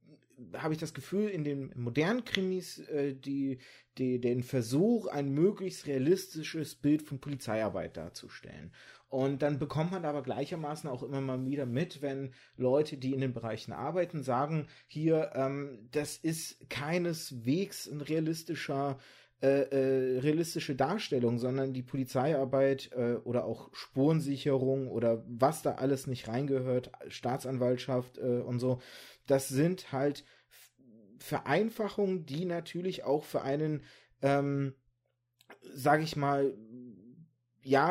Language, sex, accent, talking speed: German, male, German, 120 wpm